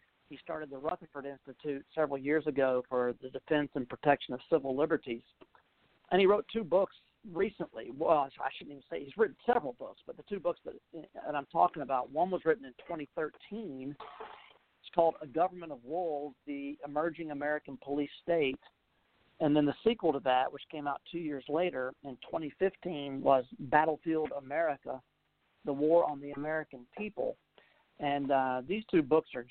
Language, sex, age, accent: English, male, 50-69, American